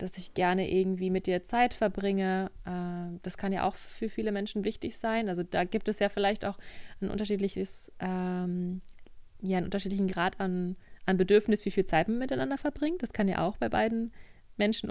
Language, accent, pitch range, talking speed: German, German, 180-210 Hz, 190 wpm